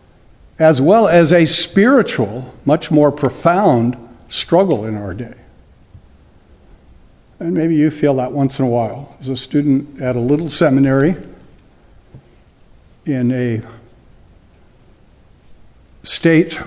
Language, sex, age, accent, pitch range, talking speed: English, male, 60-79, American, 120-165 Hz, 110 wpm